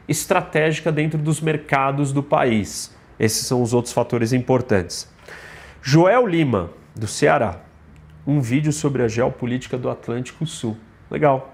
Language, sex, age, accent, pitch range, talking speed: Portuguese, male, 30-49, Brazilian, 120-160 Hz, 130 wpm